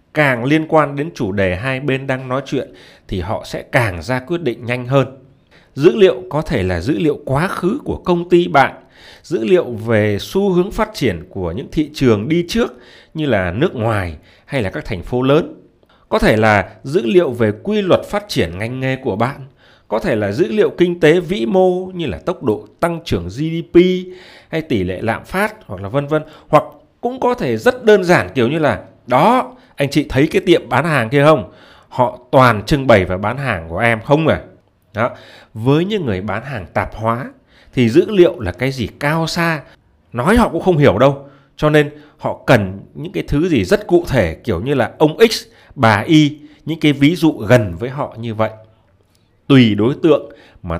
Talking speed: 210 wpm